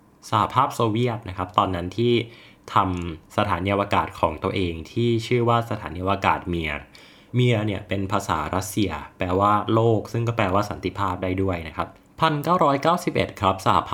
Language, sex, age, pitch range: Thai, male, 20-39, 90-115 Hz